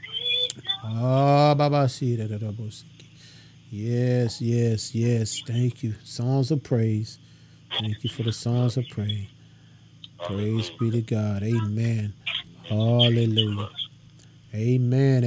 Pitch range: 115-140 Hz